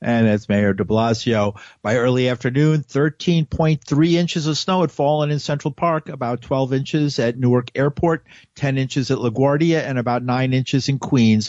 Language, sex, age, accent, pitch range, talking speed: English, male, 50-69, American, 120-150 Hz, 170 wpm